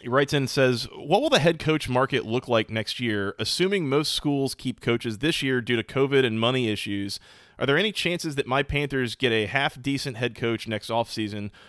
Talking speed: 220 wpm